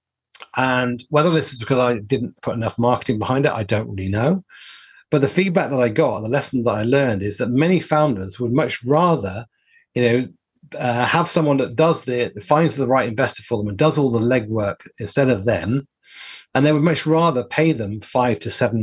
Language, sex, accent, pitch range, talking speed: English, male, British, 110-140 Hz, 210 wpm